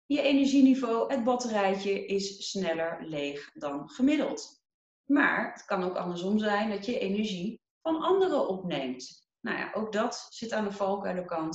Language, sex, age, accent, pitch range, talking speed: Dutch, female, 30-49, Dutch, 185-260 Hz, 150 wpm